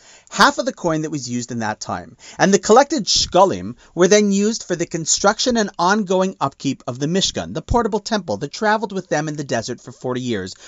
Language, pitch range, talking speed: English, 125-190 Hz, 220 wpm